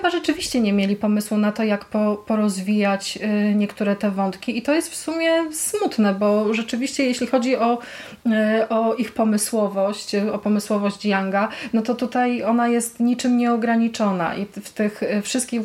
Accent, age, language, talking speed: native, 20-39, Polish, 150 wpm